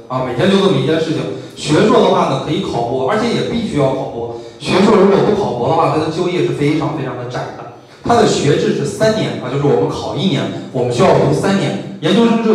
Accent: native